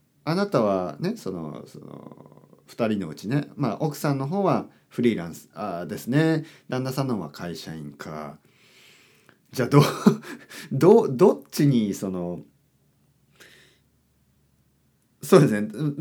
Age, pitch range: 40-59, 90-130 Hz